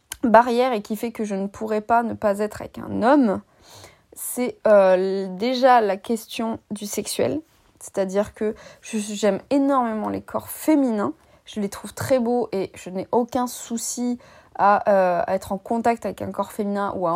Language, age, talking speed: French, 20-39, 180 wpm